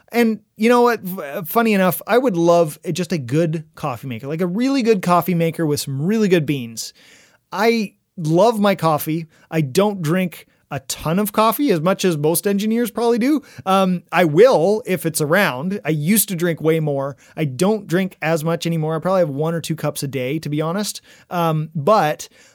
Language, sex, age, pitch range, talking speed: English, male, 30-49, 155-190 Hz, 200 wpm